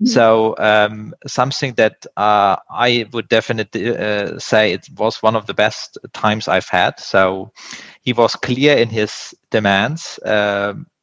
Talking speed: 145 wpm